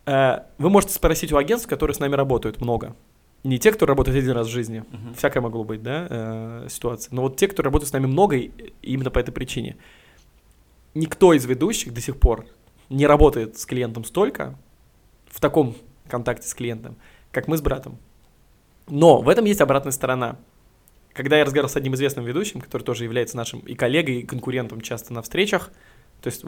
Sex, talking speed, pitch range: male, 185 wpm, 120-145 Hz